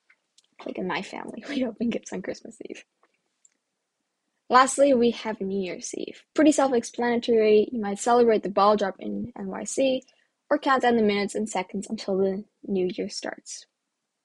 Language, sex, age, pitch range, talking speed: English, female, 10-29, 185-235 Hz, 160 wpm